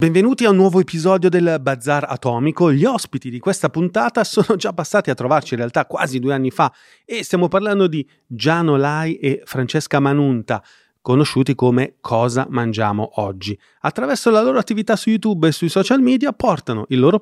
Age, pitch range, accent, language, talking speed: 30-49, 130-195 Hz, native, Italian, 180 wpm